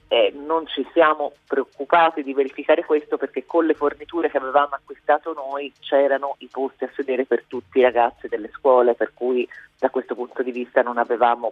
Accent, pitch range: native, 125-155 Hz